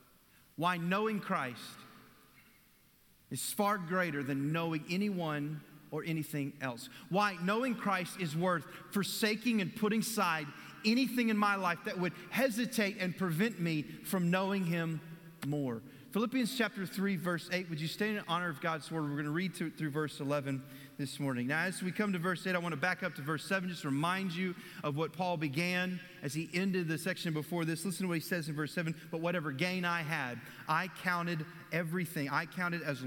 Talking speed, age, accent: 195 wpm, 40-59, American